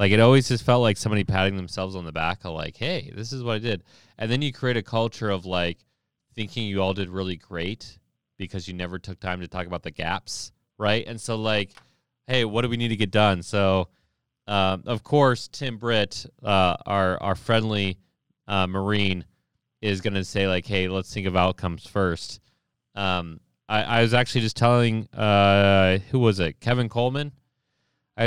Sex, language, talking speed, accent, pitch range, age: male, English, 195 wpm, American, 90-115 Hz, 20-39